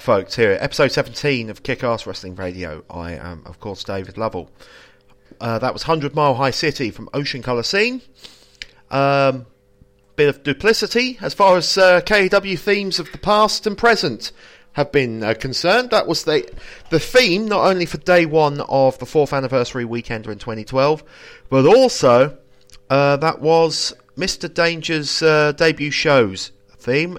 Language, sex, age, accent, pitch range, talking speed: English, male, 30-49, British, 105-160 Hz, 160 wpm